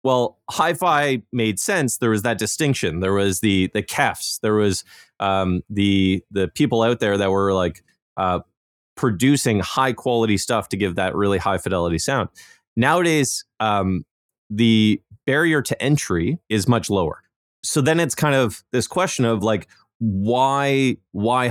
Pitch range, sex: 95-120 Hz, male